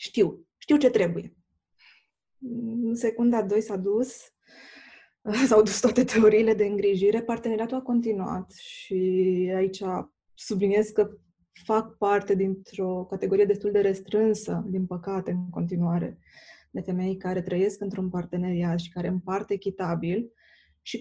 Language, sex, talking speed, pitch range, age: Romanian, female, 125 wpm, 185-210 Hz, 20-39